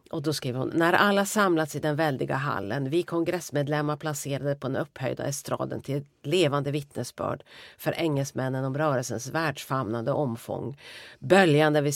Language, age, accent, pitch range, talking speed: Swedish, 40-59, native, 135-165 Hz, 150 wpm